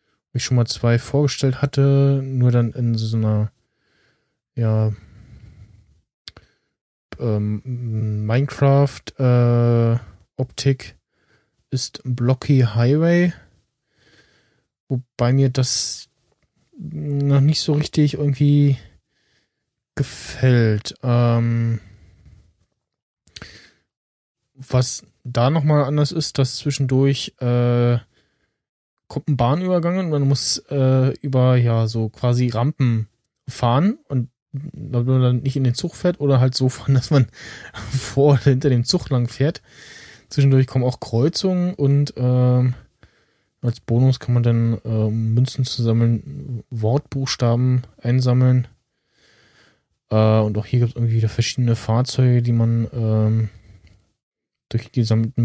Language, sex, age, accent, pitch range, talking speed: German, male, 20-39, German, 115-135 Hz, 115 wpm